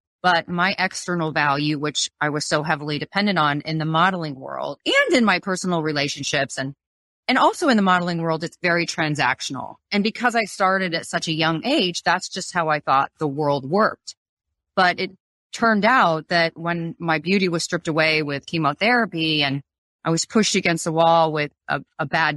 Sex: female